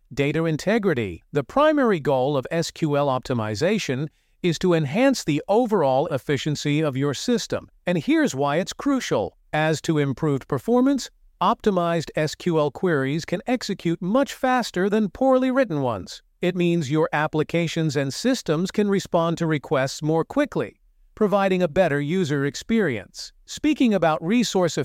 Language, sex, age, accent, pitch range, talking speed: English, male, 50-69, American, 150-205 Hz, 140 wpm